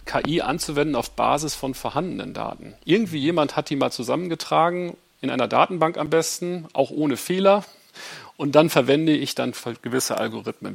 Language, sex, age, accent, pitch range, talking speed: German, male, 40-59, German, 130-165 Hz, 155 wpm